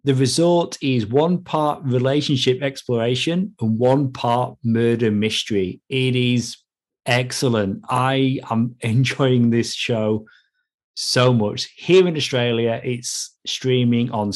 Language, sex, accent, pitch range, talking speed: English, male, British, 115-135 Hz, 115 wpm